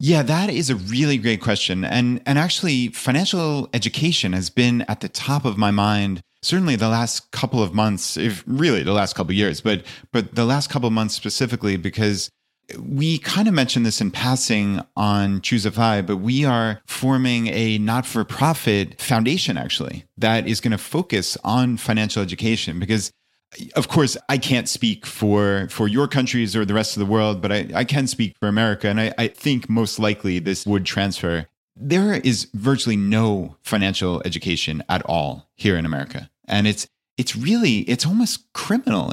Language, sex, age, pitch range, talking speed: English, male, 30-49, 105-140 Hz, 180 wpm